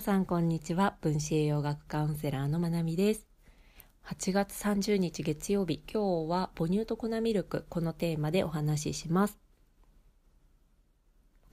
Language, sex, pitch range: Japanese, female, 150-195 Hz